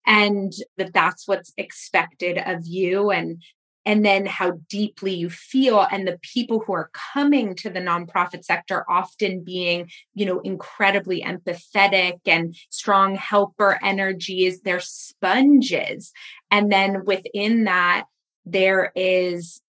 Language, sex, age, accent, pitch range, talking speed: English, female, 20-39, American, 180-205 Hz, 130 wpm